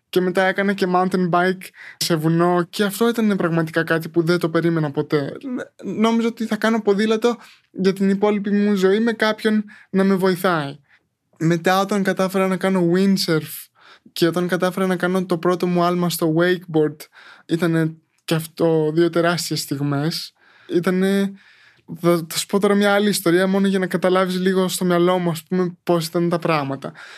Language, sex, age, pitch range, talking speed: Greek, male, 20-39, 175-205 Hz, 170 wpm